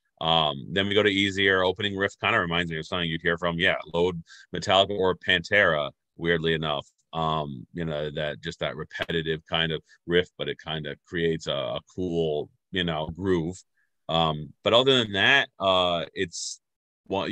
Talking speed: 185 wpm